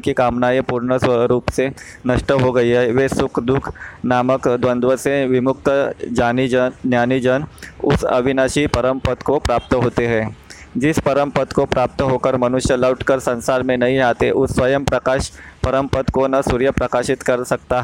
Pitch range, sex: 125-135 Hz, male